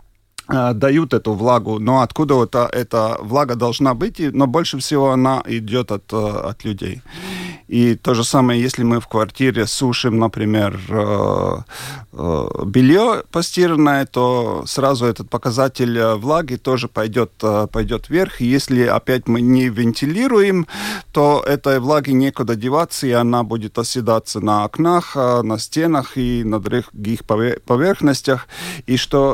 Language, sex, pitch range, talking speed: Russian, male, 115-140 Hz, 125 wpm